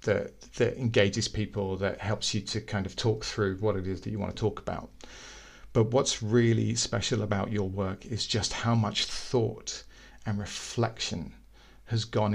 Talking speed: 180 wpm